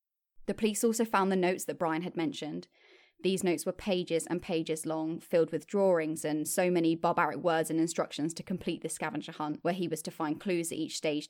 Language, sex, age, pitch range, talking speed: English, female, 10-29, 165-190 Hz, 220 wpm